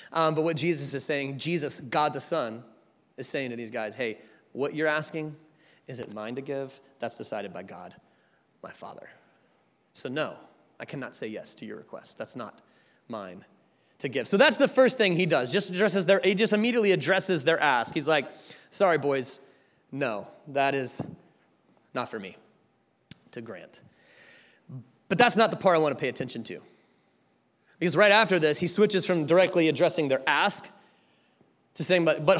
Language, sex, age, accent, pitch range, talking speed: English, male, 30-49, American, 135-190 Hz, 180 wpm